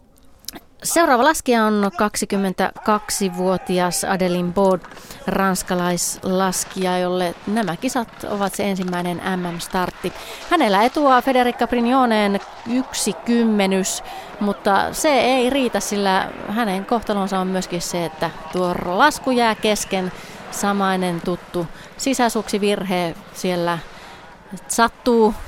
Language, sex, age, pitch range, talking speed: Finnish, female, 30-49, 185-235 Hz, 95 wpm